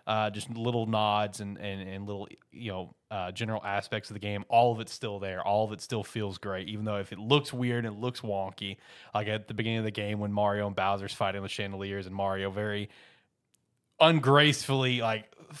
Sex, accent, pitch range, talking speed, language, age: male, American, 105-125 Hz, 210 wpm, English, 20-39